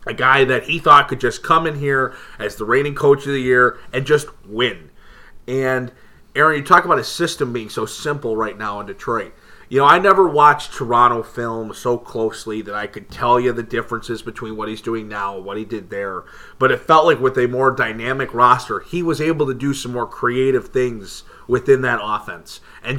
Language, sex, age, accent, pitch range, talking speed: English, male, 30-49, American, 115-145 Hz, 215 wpm